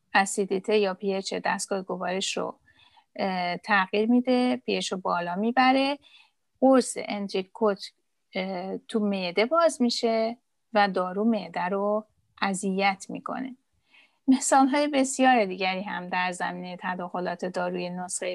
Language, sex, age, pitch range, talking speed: Persian, female, 30-49, 185-240 Hz, 110 wpm